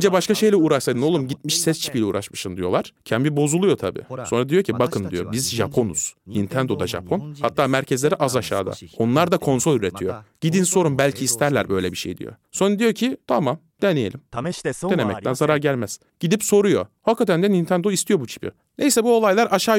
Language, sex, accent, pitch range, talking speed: Turkish, male, native, 125-190 Hz, 180 wpm